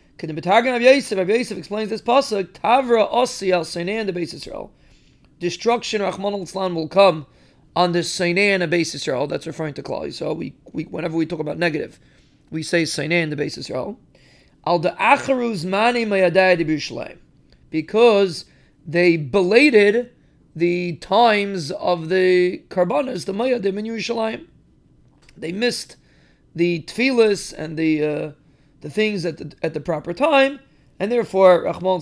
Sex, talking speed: male, 150 wpm